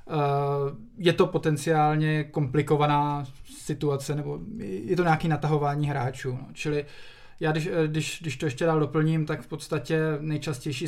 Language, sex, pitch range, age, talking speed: Czech, male, 140-155 Hz, 20-39, 145 wpm